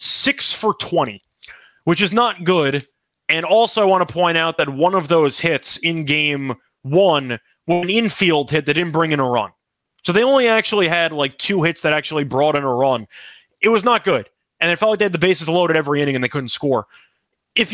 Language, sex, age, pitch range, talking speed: English, male, 20-39, 155-210 Hz, 225 wpm